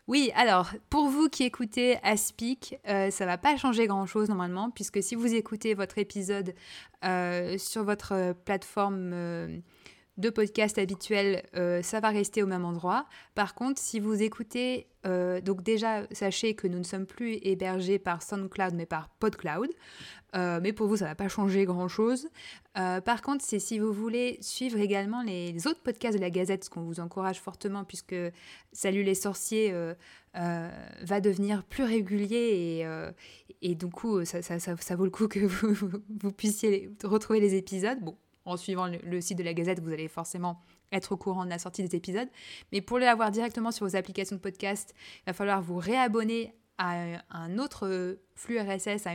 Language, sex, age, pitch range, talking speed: French, female, 20-39, 185-220 Hz, 190 wpm